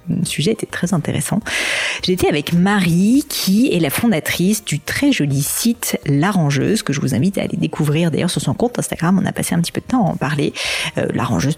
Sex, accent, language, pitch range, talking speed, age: female, French, French, 145-195 Hz, 220 wpm, 40-59